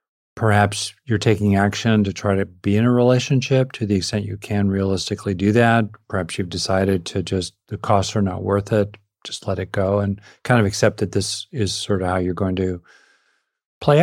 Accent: American